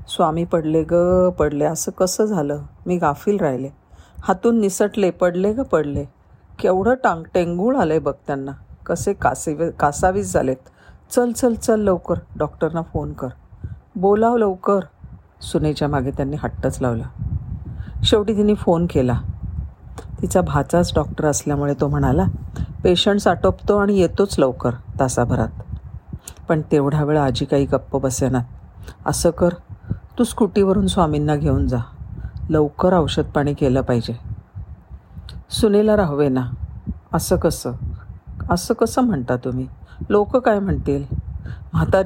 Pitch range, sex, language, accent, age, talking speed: 120-190 Hz, female, Marathi, native, 40-59, 105 wpm